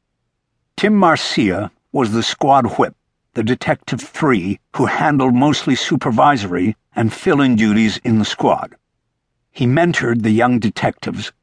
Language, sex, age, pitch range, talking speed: English, male, 60-79, 115-150 Hz, 125 wpm